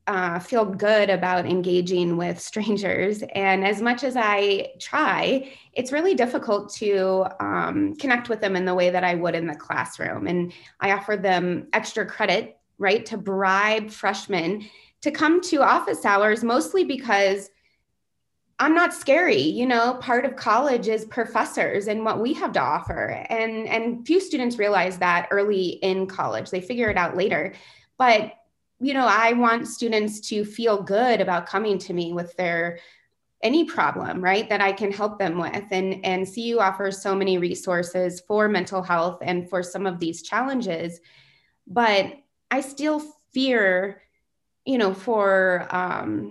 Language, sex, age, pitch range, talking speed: English, female, 20-39, 185-235 Hz, 160 wpm